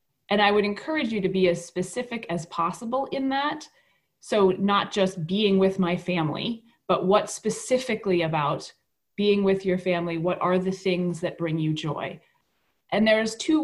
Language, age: English, 30-49